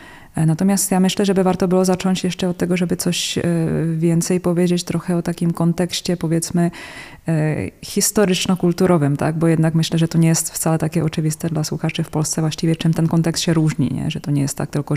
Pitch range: 155-175 Hz